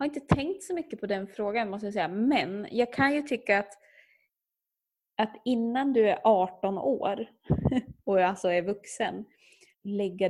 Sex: female